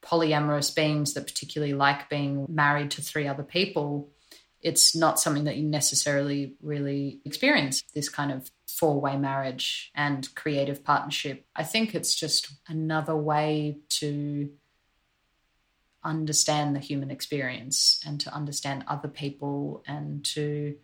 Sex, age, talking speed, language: female, 30-49, 130 wpm, English